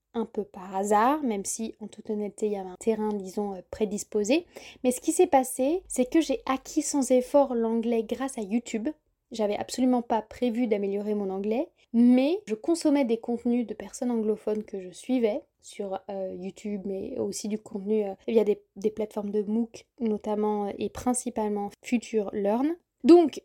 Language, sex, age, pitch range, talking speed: French, female, 20-39, 215-270 Hz, 180 wpm